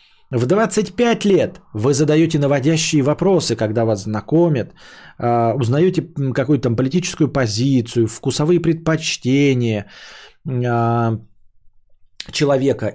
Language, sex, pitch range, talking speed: Bulgarian, male, 120-170 Hz, 85 wpm